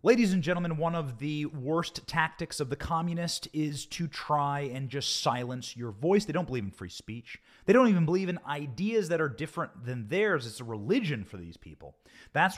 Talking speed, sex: 205 wpm, male